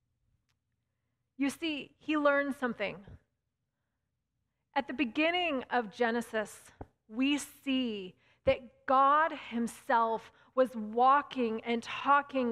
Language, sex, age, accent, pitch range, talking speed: English, female, 30-49, American, 235-305 Hz, 90 wpm